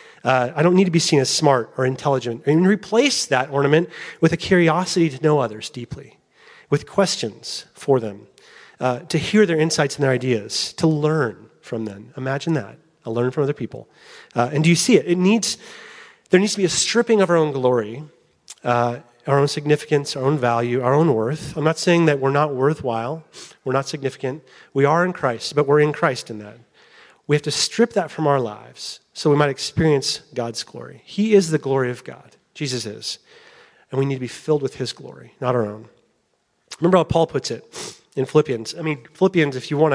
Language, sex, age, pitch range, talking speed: English, male, 30-49, 125-160 Hz, 210 wpm